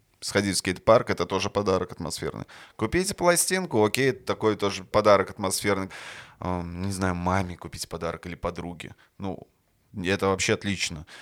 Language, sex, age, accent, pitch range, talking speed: Russian, male, 20-39, native, 100-130 Hz, 135 wpm